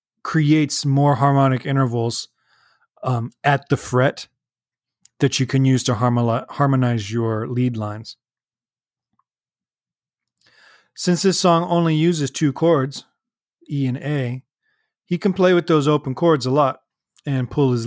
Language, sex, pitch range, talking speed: English, male, 125-150 Hz, 130 wpm